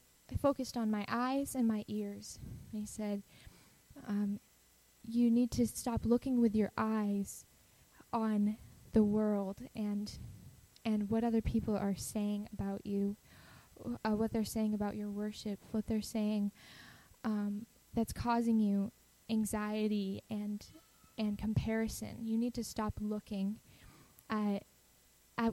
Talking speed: 130 wpm